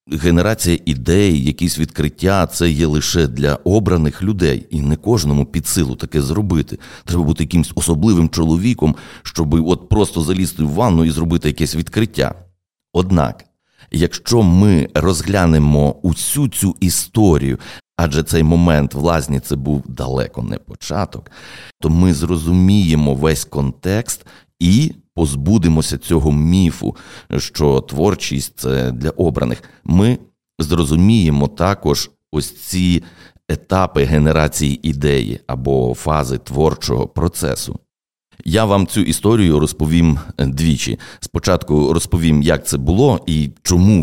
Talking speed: 120 wpm